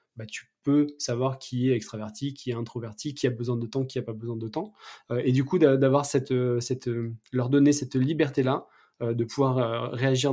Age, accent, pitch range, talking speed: 20-39, French, 120-140 Hz, 210 wpm